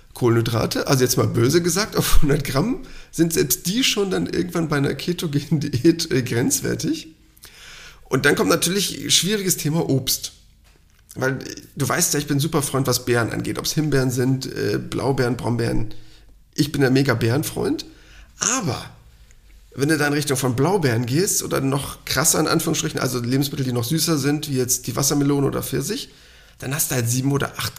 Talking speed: 185 wpm